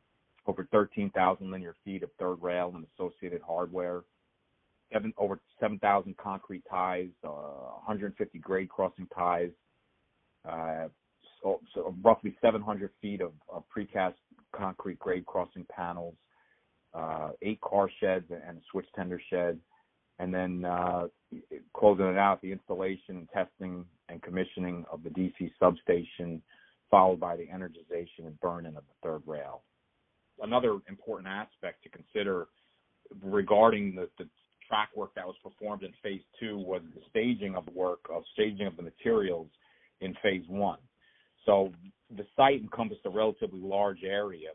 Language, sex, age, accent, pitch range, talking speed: English, male, 40-59, American, 90-100 Hz, 135 wpm